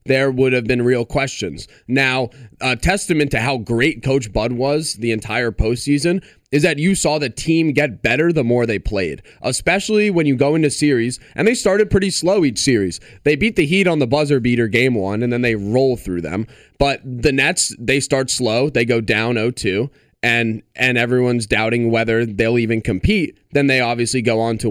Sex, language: male, English